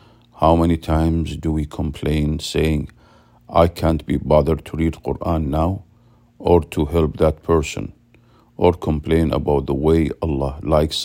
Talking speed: 145 wpm